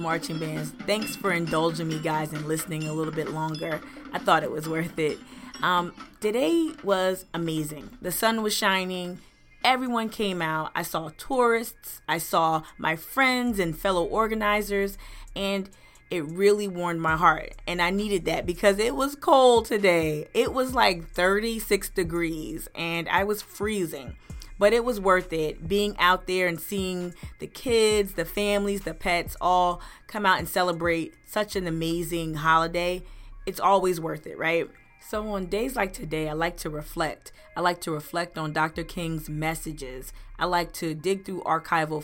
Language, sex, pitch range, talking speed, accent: English, female, 160-200 Hz, 165 wpm, American